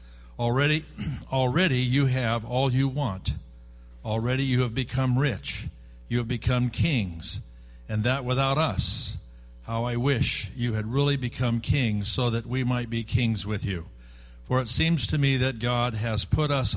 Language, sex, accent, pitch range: English, male, American, 100-130 Hz